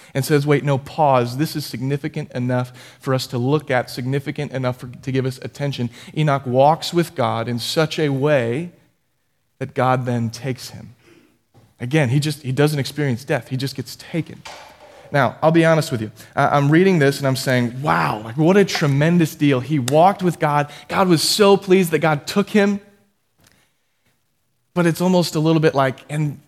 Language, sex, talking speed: English, male, 185 wpm